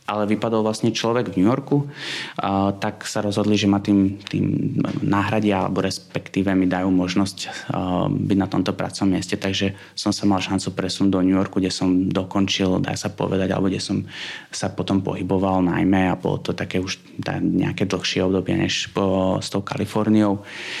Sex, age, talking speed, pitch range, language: male, 20-39, 180 wpm, 95-105 Hz, Slovak